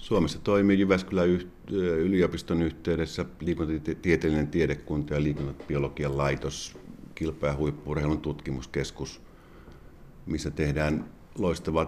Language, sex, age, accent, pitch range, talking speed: Finnish, male, 50-69, native, 70-80 Hz, 80 wpm